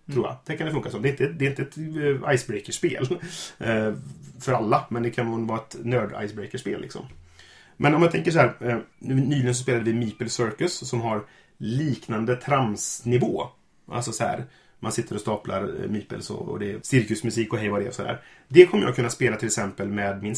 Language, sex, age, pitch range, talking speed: English, male, 30-49, 110-140 Hz, 200 wpm